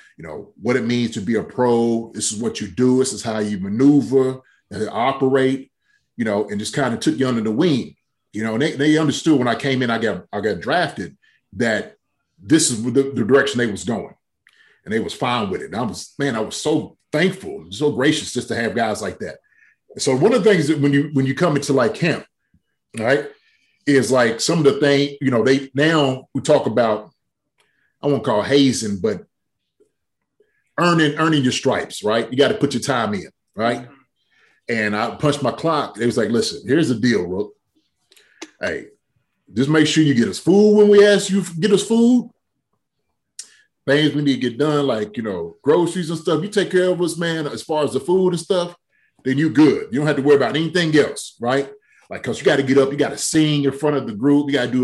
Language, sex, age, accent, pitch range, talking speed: English, male, 30-49, American, 125-165 Hz, 230 wpm